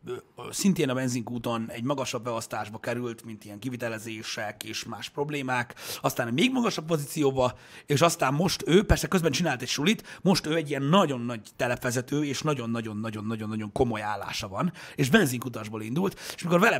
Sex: male